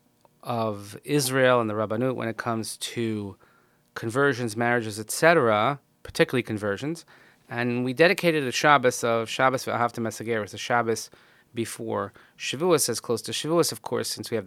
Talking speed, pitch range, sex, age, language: 155 wpm, 110-140 Hz, male, 30-49, English